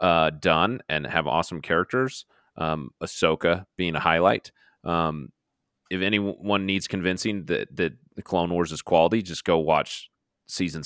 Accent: American